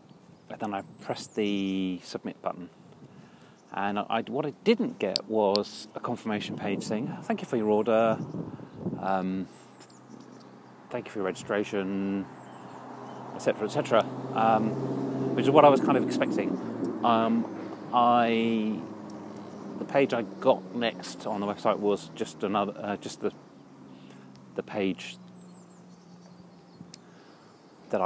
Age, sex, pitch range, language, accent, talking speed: 30-49, male, 90-120 Hz, English, British, 130 wpm